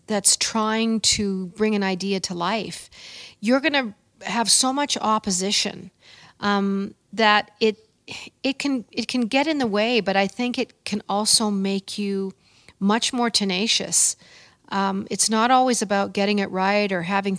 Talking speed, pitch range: 160 wpm, 195-230 Hz